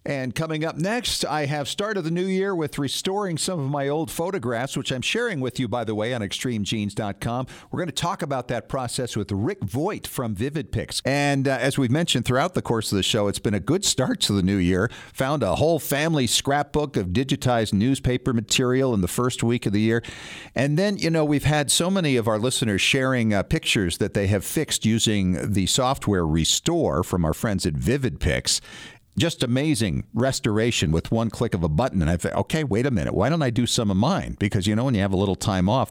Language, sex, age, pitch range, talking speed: English, male, 50-69, 105-145 Hz, 225 wpm